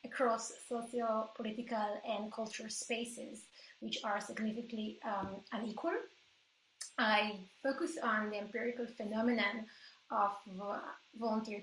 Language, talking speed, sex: English, 95 wpm, female